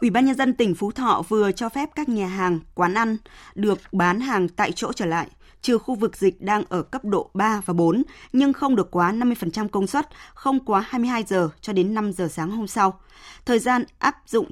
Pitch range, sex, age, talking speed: 175-230 Hz, female, 20-39, 225 wpm